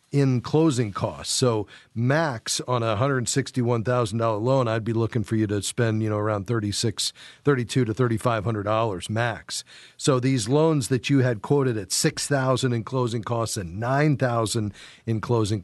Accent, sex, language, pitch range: American, male, English, 110-135 Hz